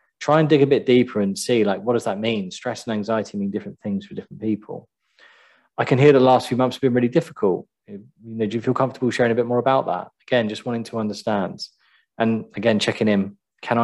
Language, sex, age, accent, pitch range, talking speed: English, male, 20-39, British, 105-135 Hz, 230 wpm